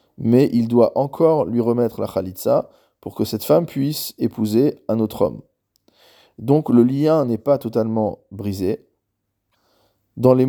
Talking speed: 150 wpm